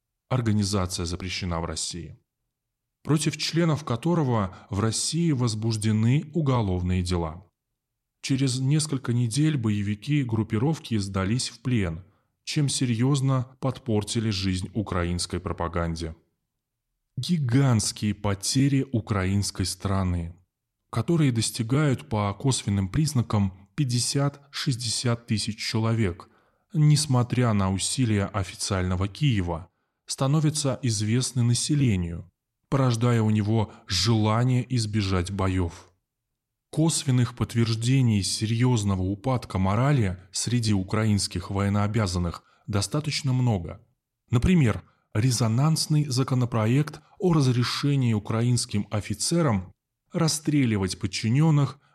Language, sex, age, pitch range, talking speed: Russian, male, 20-39, 100-130 Hz, 85 wpm